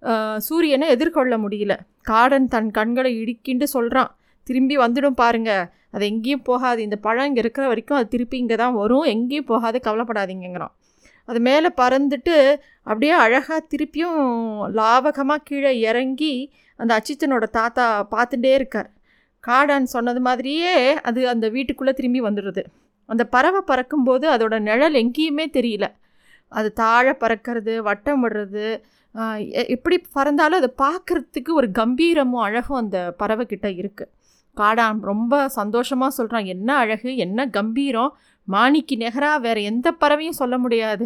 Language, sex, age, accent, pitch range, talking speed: Tamil, female, 20-39, native, 225-285 Hz, 125 wpm